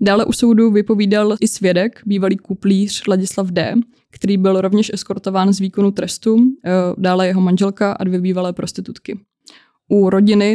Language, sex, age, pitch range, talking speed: Czech, female, 20-39, 185-205 Hz, 150 wpm